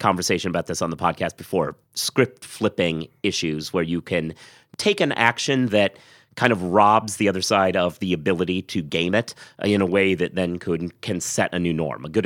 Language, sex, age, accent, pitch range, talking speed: English, male, 30-49, American, 90-110 Hz, 210 wpm